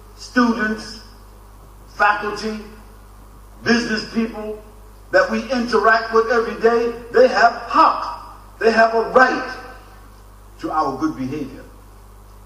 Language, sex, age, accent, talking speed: English, male, 50-69, American, 100 wpm